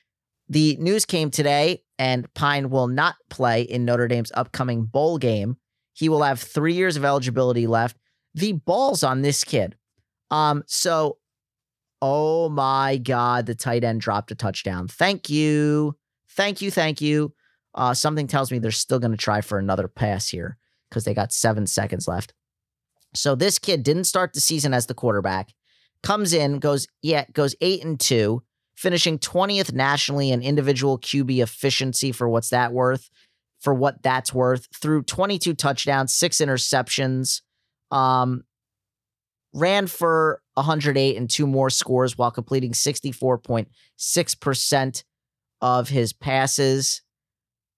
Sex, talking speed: male, 145 wpm